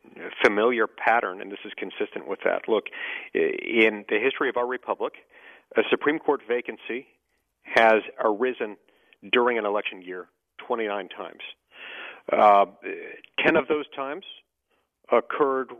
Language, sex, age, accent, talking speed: English, male, 50-69, American, 125 wpm